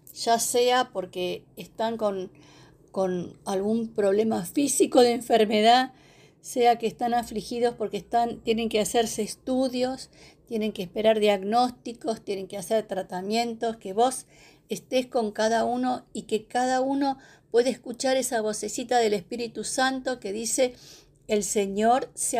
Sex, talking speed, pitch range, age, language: female, 135 wpm, 195-245 Hz, 50-69, Spanish